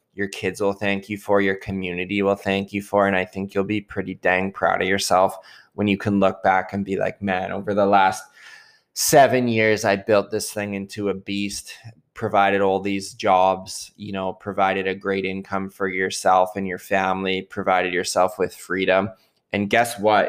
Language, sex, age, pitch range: English, male, 20-39, 95-105 Hz